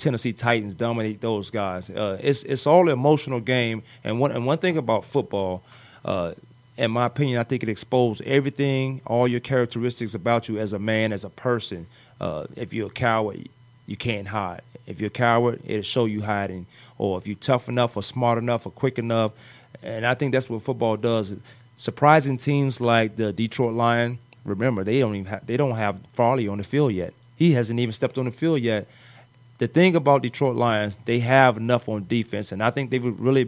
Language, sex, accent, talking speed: English, male, American, 205 wpm